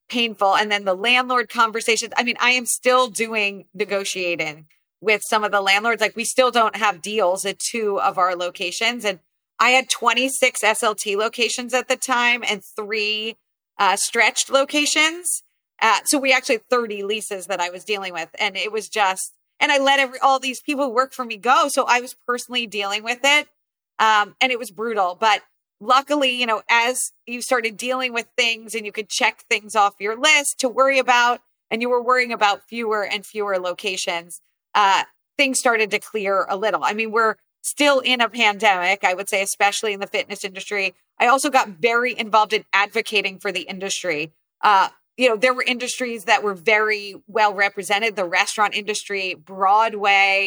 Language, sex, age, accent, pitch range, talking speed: English, female, 30-49, American, 200-250 Hz, 190 wpm